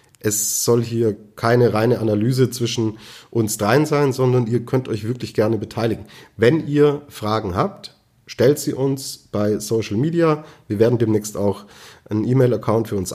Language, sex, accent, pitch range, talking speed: German, male, German, 105-125 Hz, 160 wpm